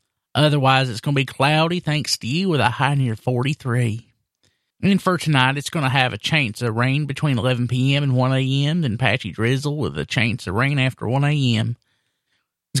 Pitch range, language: 115-145 Hz, English